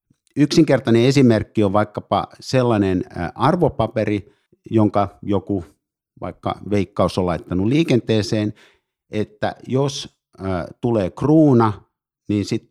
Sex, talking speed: male, 90 wpm